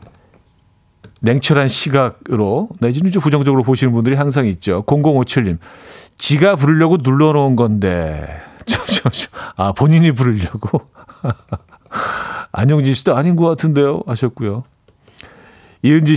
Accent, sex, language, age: native, male, Korean, 40-59